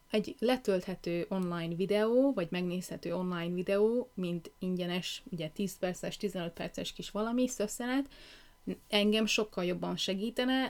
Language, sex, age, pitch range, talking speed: Hungarian, female, 30-49, 185-220 Hz, 125 wpm